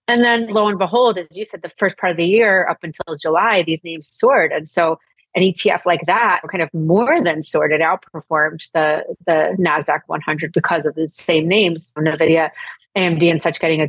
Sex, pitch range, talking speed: female, 160-190 Hz, 205 wpm